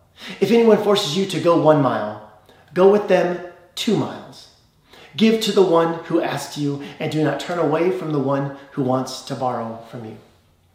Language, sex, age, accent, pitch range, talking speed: English, male, 30-49, American, 140-190 Hz, 190 wpm